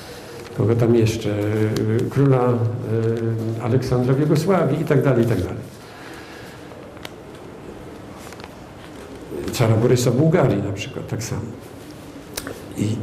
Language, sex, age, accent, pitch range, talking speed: Polish, male, 50-69, native, 115-140 Hz, 90 wpm